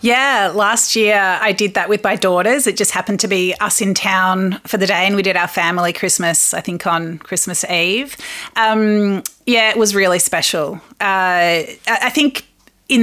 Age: 30-49